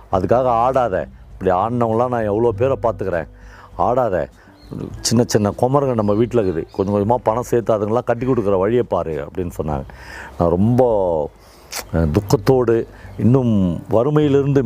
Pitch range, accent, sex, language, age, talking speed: 95-135 Hz, native, male, Tamil, 50-69, 125 wpm